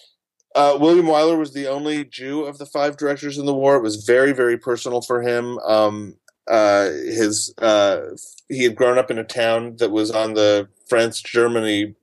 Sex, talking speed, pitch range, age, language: male, 190 wpm, 110-130 Hz, 30-49, English